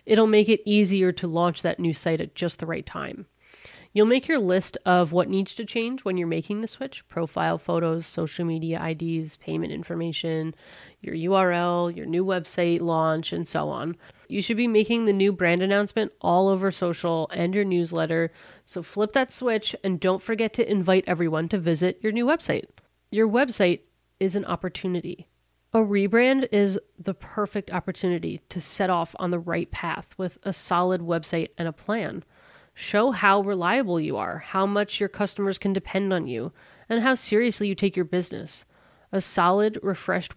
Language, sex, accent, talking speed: English, female, American, 180 wpm